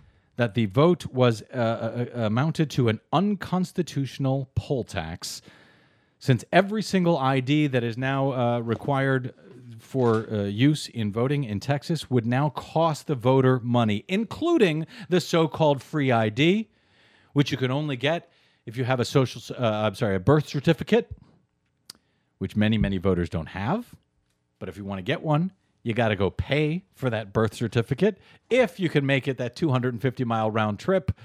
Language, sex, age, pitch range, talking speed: English, male, 40-59, 105-145 Hz, 165 wpm